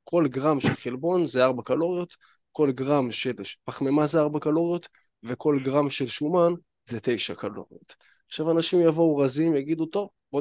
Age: 20-39